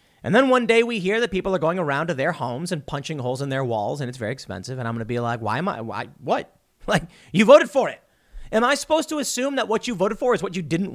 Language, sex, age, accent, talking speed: English, male, 30-49, American, 295 wpm